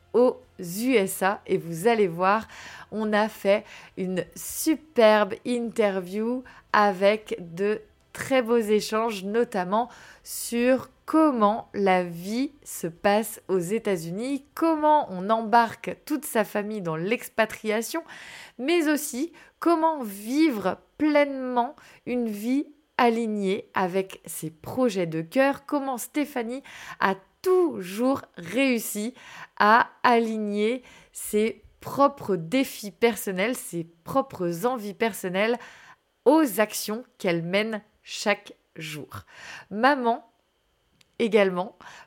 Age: 20-39